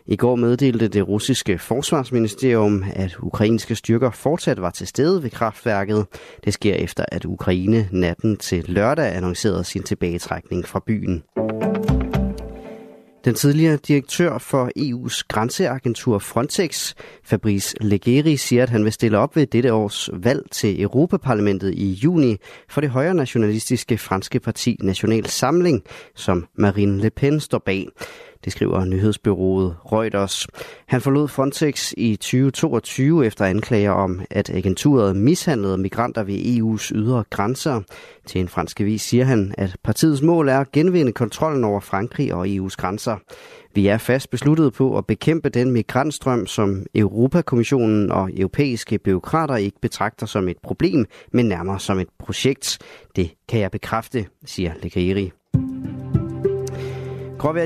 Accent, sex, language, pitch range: native, male, Danish, 100-140 Hz